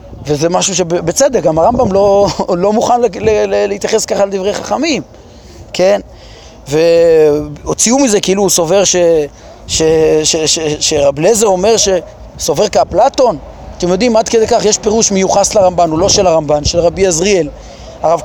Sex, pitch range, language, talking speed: male, 165-225 Hz, Hebrew, 160 wpm